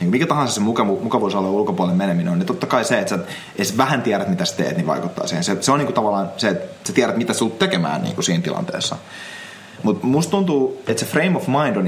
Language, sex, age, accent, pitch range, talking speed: Finnish, male, 30-49, native, 90-130 Hz, 250 wpm